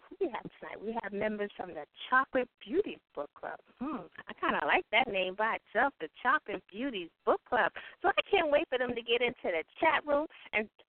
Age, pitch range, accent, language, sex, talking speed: 30-49, 195-265 Hz, American, English, female, 200 wpm